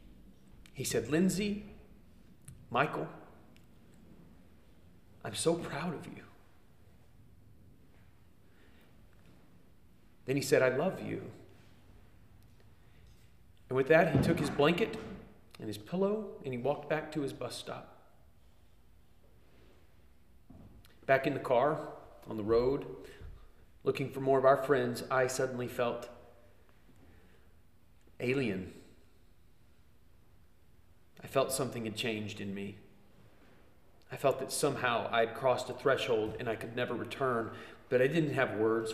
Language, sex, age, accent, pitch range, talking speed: English, male, 40-59, American, 100-135 Hz, 115 wpm